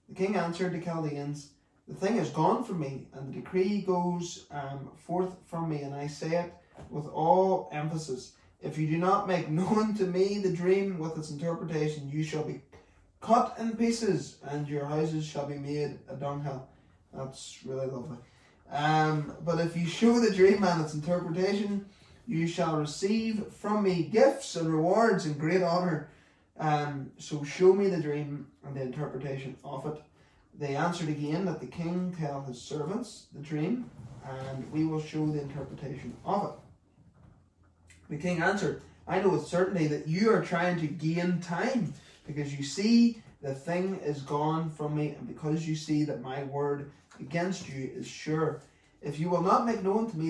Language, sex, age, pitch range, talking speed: English, male, 20-39, 145-185 Hz, 180 wpm